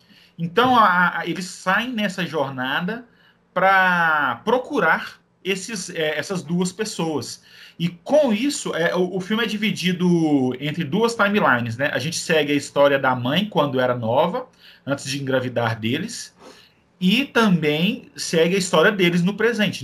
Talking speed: 135 wpm